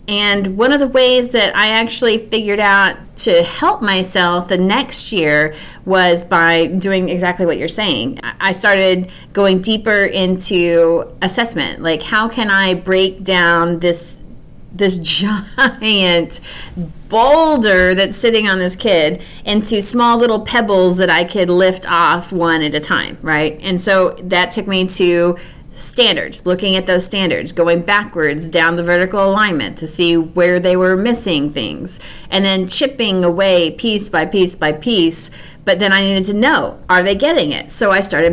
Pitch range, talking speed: 175-215 Hz, 165 wpm